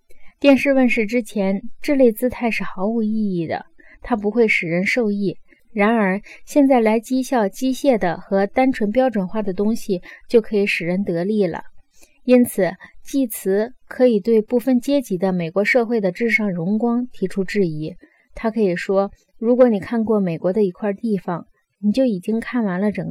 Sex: female